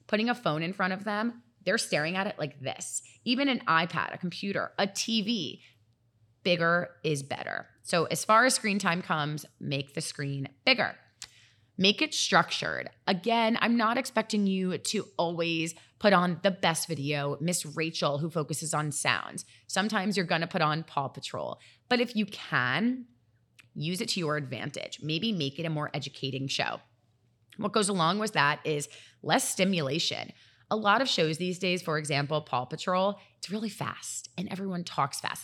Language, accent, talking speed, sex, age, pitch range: English, American, 175 wpm, female, 30-49, 140-195 Hz